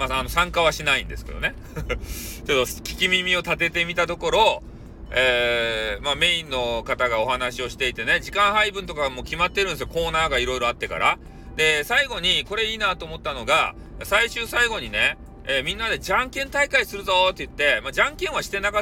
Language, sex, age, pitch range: Japanese, male, 40-59, 125-195 Hz